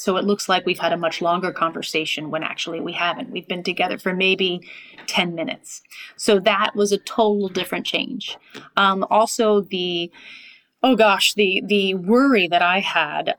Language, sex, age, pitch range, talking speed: English, female, 30-49, 180-205 Hz, 175 wpm